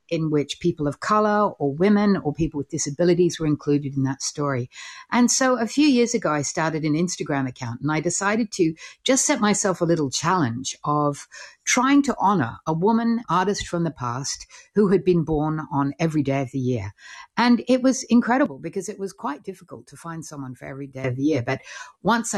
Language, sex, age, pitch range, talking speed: English, female, 60-79, 140-195 Hz, 205 wpm